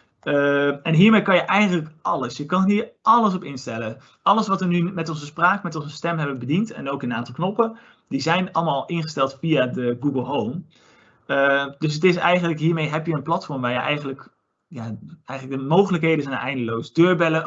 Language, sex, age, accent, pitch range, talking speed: Dutch, male, 30-49, Dutch, 135-165 Hz, 200 wpm